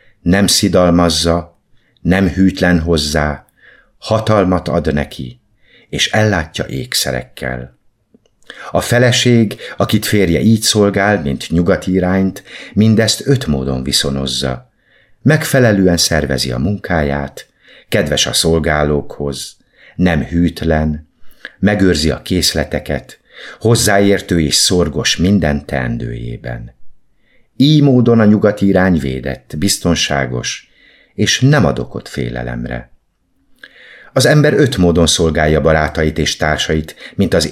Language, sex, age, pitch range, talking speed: Hungarian, male, 50-69, 75-100 Hz, 100 wpm